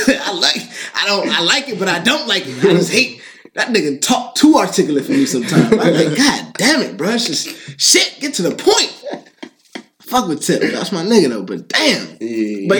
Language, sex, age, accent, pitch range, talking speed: English, male, 20-39, American, 130-195 Hz, 220 wpm